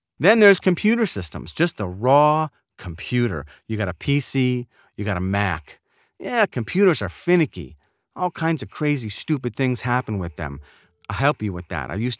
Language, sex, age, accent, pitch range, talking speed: English, male, 40-59, American, 100-145 Hz, 175 wpm